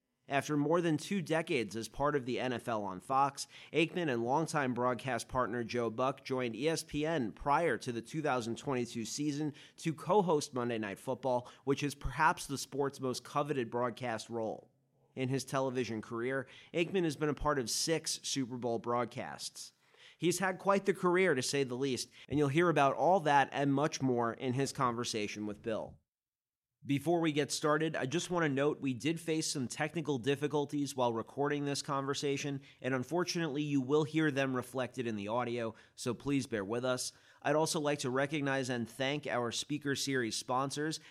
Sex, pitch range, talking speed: male, 125-150 Hz, 180 wpm